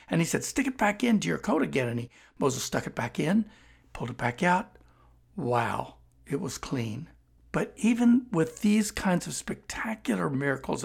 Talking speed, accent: 175 wpm, American